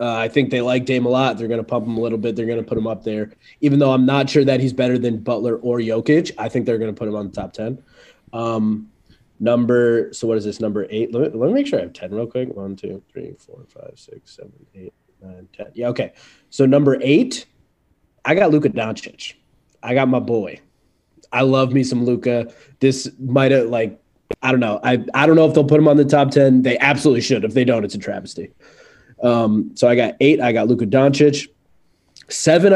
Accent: American